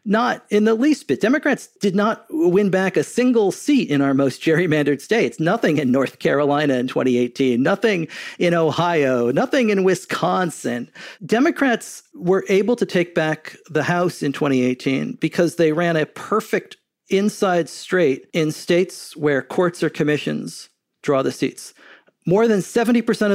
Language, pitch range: English, 150-205 Hz